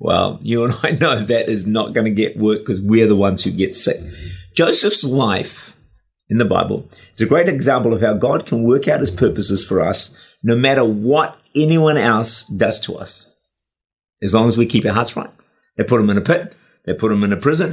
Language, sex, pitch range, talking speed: English, male, 105-150 Hz, 225 wpm